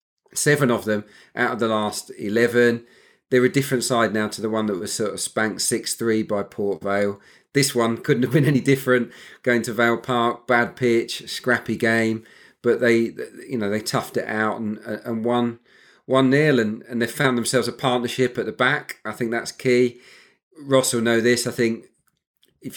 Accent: British